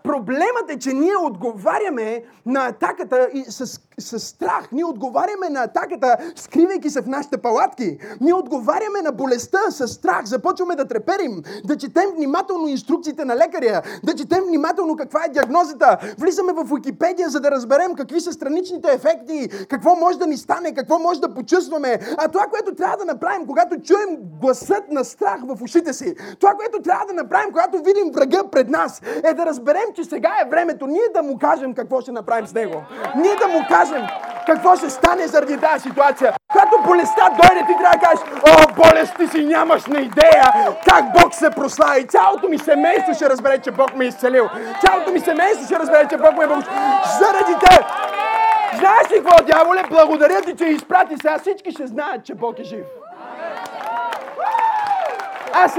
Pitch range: 275-365 Hz